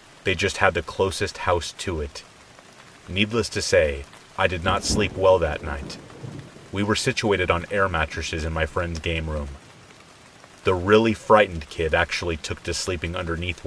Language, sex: English, male